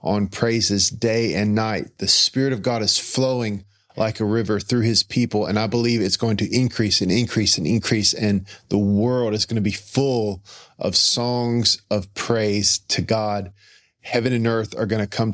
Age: 40-59